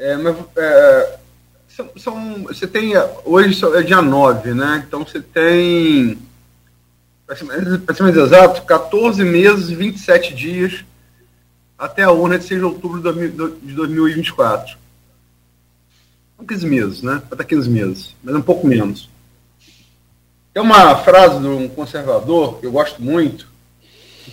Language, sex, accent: Portuguese, male, Brazilian